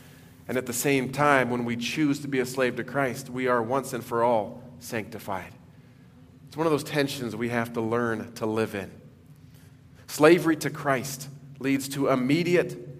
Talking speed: 180 wpm